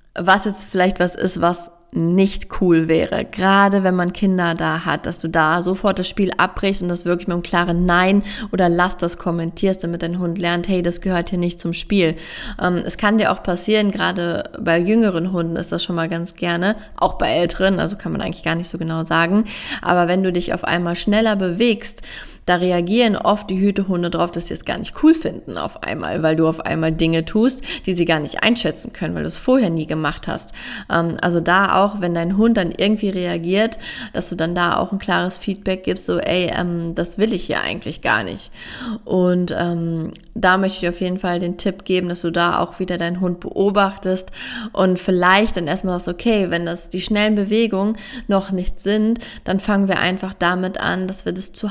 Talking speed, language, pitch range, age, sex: 215 wpm, German, 170-200 Hz, 20-39, female